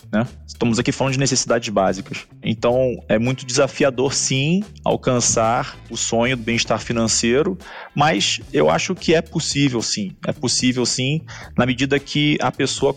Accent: Brazilian